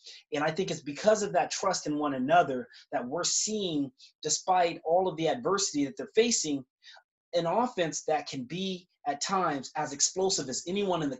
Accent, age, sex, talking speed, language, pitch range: American, 30-49, male, 190 wpm, English, 150-220 Hz